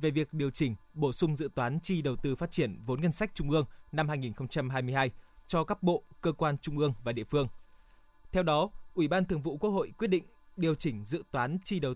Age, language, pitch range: 20-39, Vietnamese, 135-175 Hz